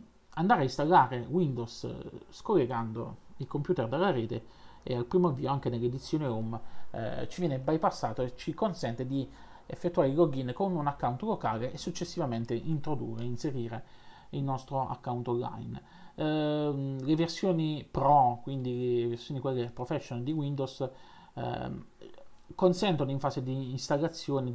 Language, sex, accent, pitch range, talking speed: Italian, male, native, 125-160 Hz, 140 wpm